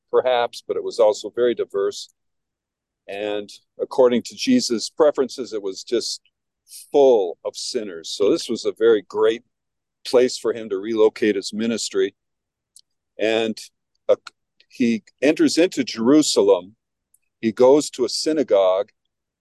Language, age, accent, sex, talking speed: English, 50-69, American, male, 125 wpm